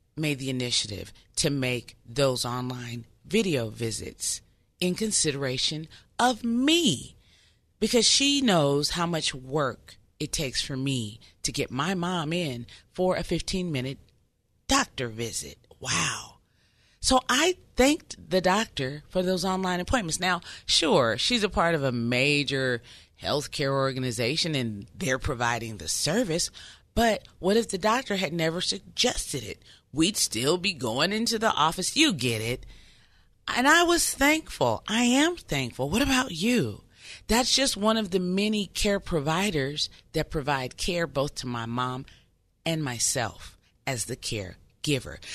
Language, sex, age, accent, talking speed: English, female, 30-49, American, 140 wpm